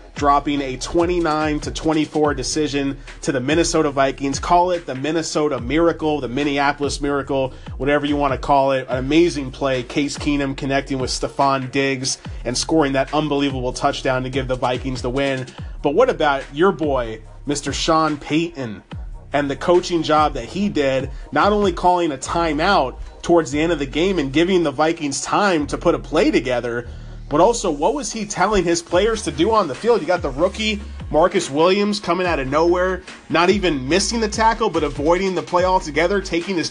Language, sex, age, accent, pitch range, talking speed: English, male, 30-49, American, 145-185 Hz, 190 wpm